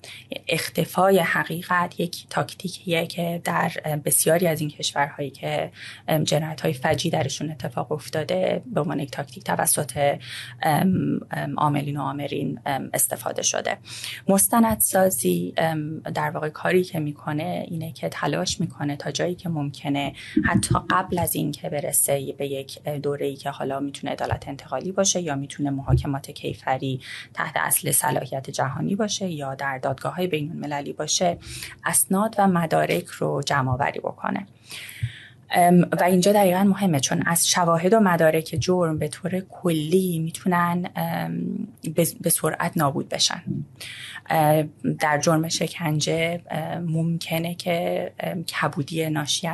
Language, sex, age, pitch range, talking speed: Persian, female, 30-49, 140-175 Hz, 125 wpm